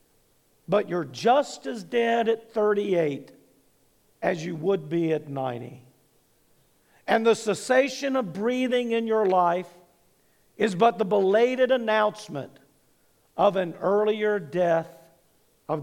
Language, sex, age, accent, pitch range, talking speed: English, male, 50-69, American, 165-235 Hz, 120 wpm